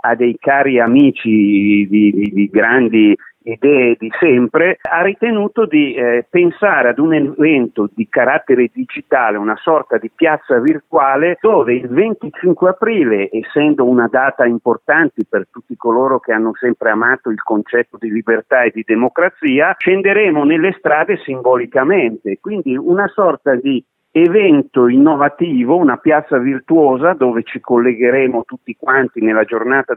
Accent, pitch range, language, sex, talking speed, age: native, 120-180 Hz, Italian, male, 140 wpm, 50-69